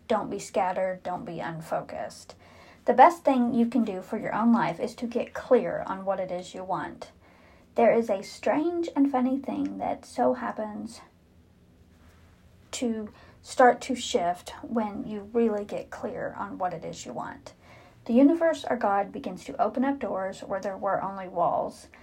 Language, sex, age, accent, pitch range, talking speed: English, female, 40-59, American, 190-255 Hz, 175 wpm